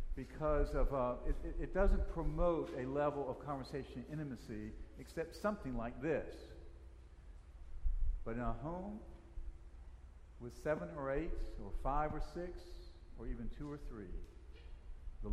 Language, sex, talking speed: English, male, 135 wpm